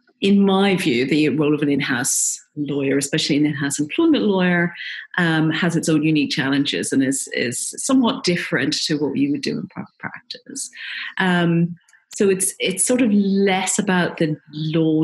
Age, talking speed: 40-59, 170 wpm